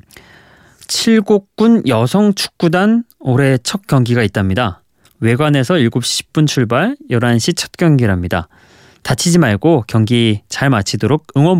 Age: 20-39